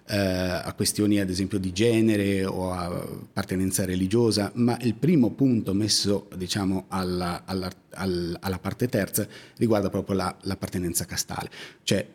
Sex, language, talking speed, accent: male, Italian, 135 wpm, native